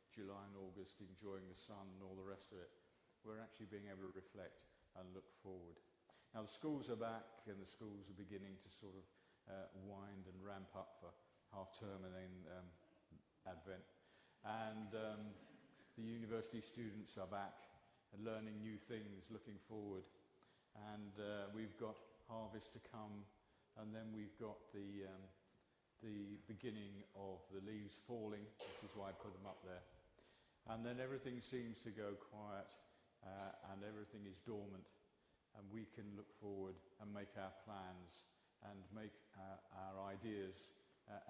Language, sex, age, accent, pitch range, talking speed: English, male, 50-69, British, 95-110 Hz, 165 wpm